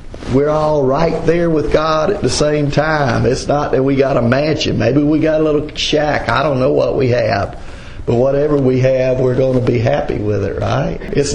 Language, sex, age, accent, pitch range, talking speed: English, male, 50-69, American, 125-145 Hz, 220 wpm